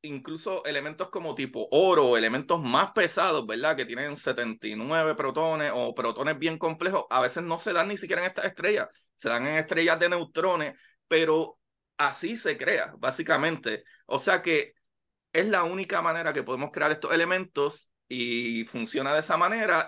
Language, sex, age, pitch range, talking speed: Spanish, male, 30-49, 125-160 Hz, 165 wpm